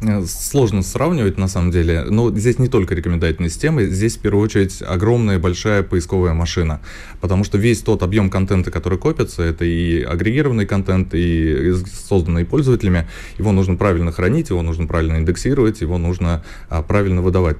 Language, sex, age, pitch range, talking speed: Russian, male, 20-39, 85-105 Hz, 160 wpm